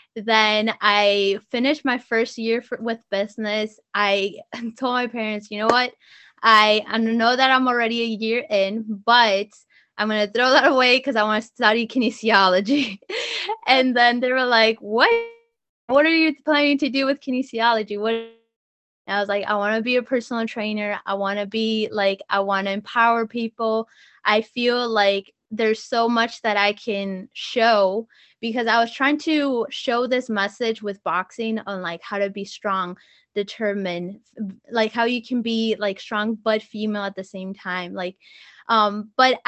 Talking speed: 175 wpm